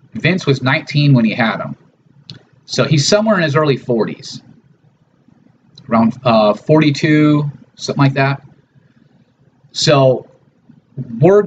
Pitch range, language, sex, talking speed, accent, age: 125-155 Hz, English, male, 115 wpm, American, 30-49